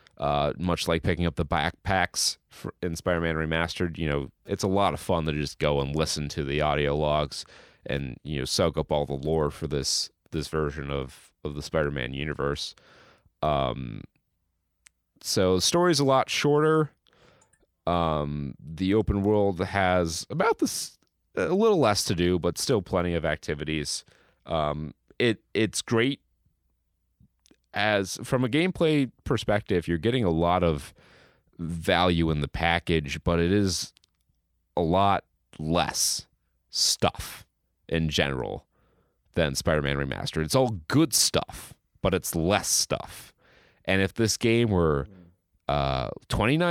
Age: 30-49